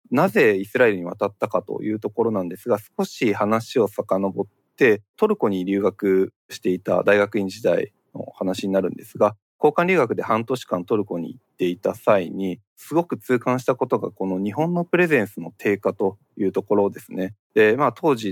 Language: Japanese